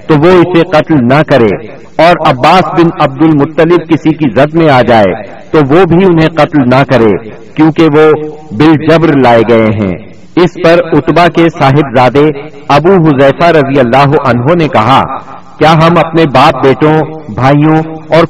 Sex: male